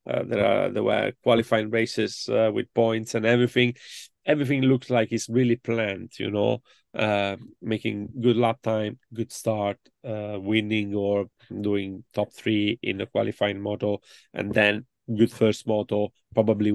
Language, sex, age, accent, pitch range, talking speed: English, male, 30-49, Italian, 105-125 Hz, 155 wpm